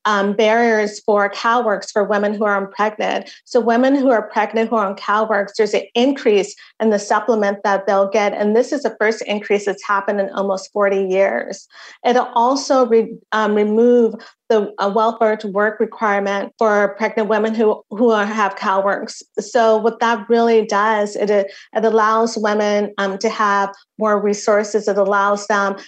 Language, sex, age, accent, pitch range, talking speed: English, female, 30-49, American, 205-230 Hz, 175 wpm